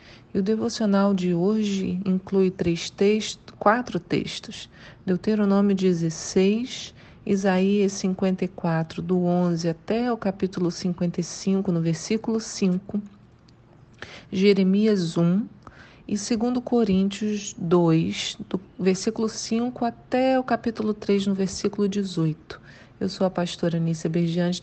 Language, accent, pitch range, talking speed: Portuguese, Brazilian, 175-215 Hz, 110 wpm